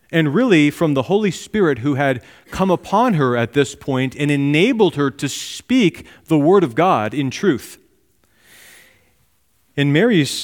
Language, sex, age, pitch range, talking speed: English, male, 40-59, 115-155 Hz, 155 wpm